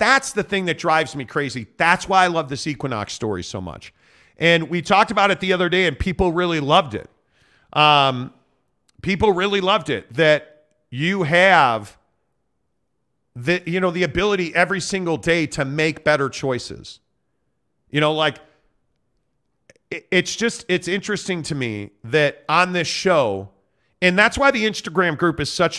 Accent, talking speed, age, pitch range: American, 165 wpm, 40-59, 140-180 Hz